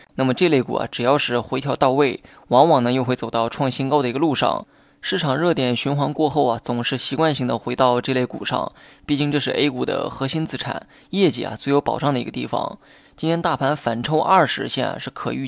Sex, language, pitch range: male, Chinese, 125-150 Hz